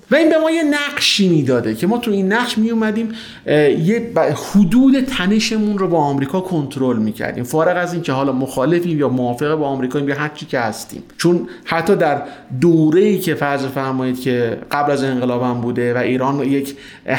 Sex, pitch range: male, 140-190 Hz